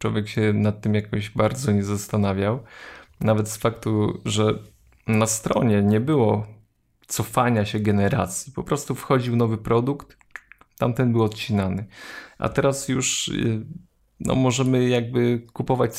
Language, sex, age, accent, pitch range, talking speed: Polish, male, 20-39, native, 105-130 Hz, 130 wpm